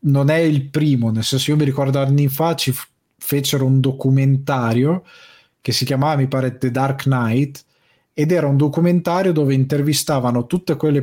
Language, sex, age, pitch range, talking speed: Italian, male, 20-39, 120-140 Hz, 170 wpm